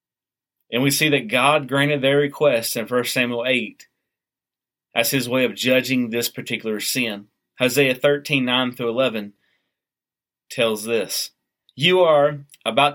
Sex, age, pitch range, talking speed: male, 30-49, 110-140 Hz, 135 wpm